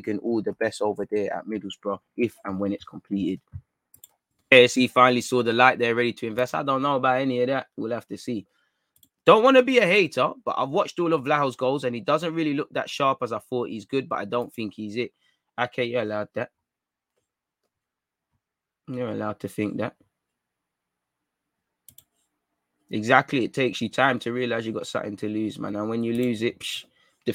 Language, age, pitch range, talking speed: English, 20-39, 110-135 Hz, 205 wpm